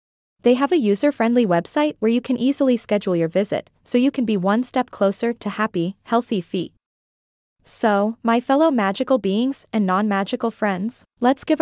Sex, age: female, 20-39